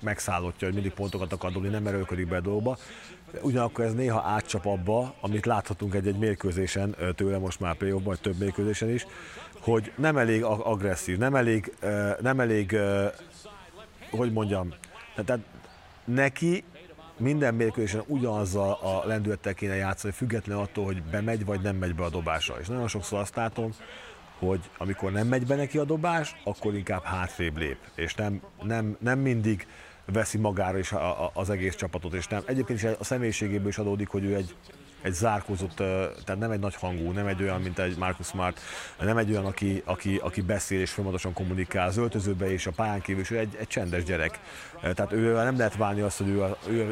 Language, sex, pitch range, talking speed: Hungarian, male, 95-110 Hz, 185 wpm